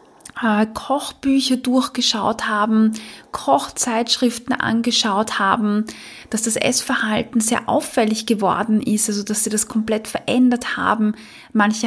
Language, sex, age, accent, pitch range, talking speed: German, female, 20-39, German, 215-245 Hz, 105 wpm